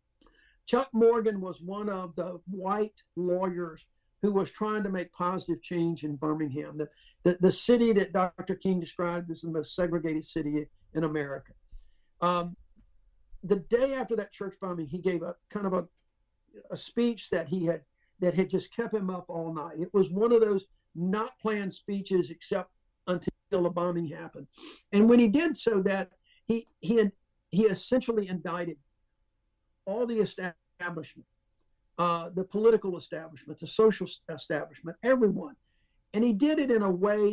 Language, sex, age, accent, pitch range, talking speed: English, male, 60-79, American, 170-205 Hz, 160 wpm